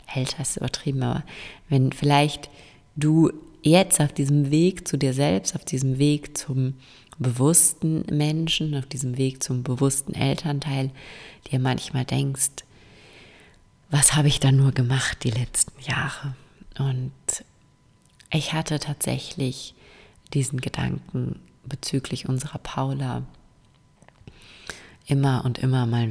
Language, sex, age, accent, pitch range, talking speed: German, female, 30-49, German, 125-150 Hz, 115 wpm